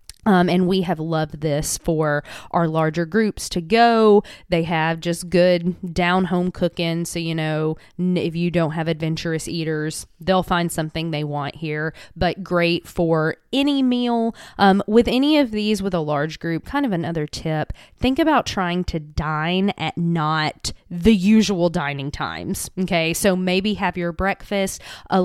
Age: 20-39